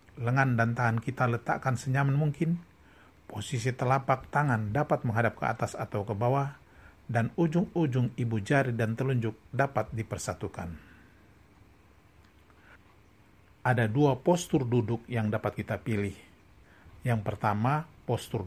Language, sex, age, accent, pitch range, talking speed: Indonesian, male, 50-69, native, 105-135 Hz, 115 wpm